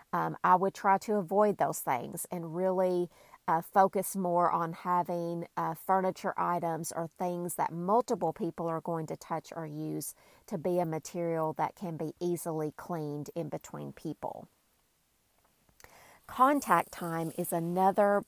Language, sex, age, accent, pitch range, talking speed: English, female, 40-59, American, 165-195 Hz, 150 wpm